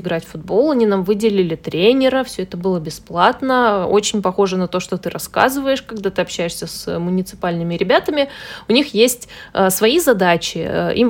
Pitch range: 180-215 Hz